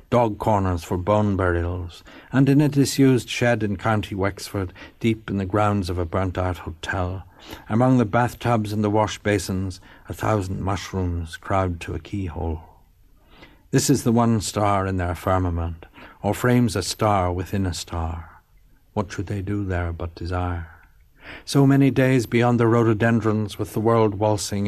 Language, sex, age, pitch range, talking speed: English, male, 60-79, 90-115 Hz, 160 wpm